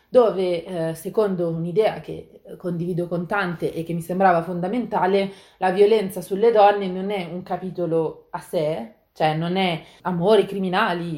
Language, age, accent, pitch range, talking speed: Italian, 30-49, native, 160-195 Hz, 150 wpm